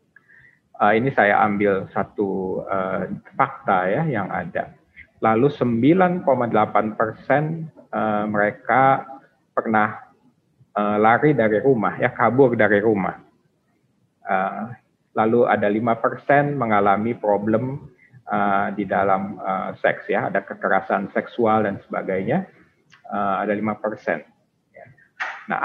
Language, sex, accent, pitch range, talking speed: Indonesian, male, native, 105-130 Hz, 110 wpm